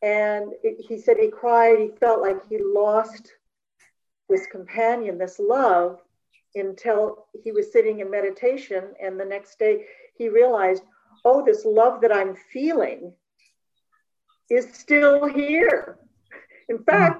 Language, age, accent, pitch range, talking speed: English, 50-69, American, 190-285 Hz, 130 wpm